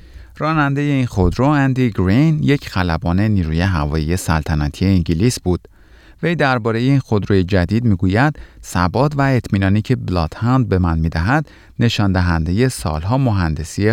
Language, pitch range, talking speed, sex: Persian, 85-125 Hz, 140 wpm, male